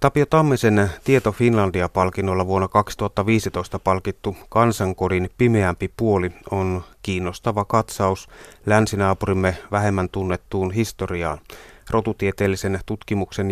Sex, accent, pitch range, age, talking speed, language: male, native, 95-110 Hz, 30-49, 85 wpm, Finnish